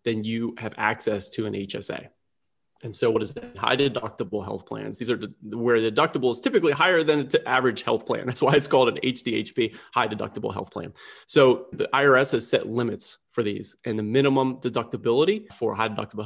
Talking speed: 205 wpm